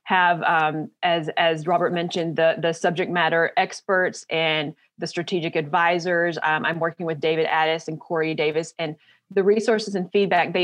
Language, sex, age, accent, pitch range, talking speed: English, female, 30-49, American, 165-195 Hz, 170 wpm